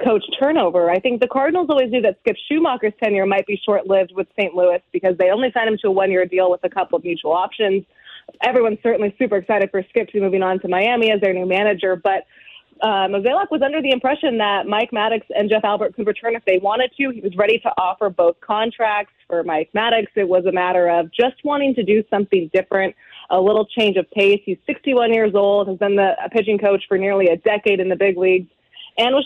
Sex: female